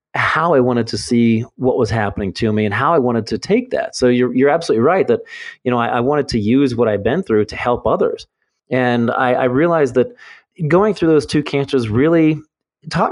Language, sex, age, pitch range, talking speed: English, male, 30-49, 110-140 Hz, 225 wpm